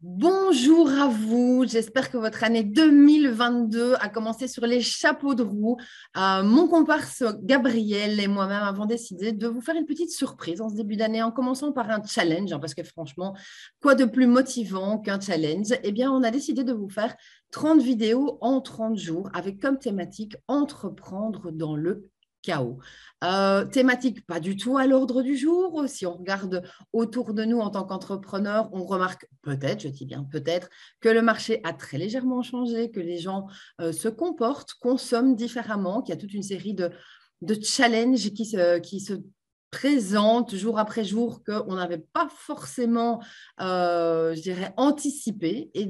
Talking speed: 175 wpm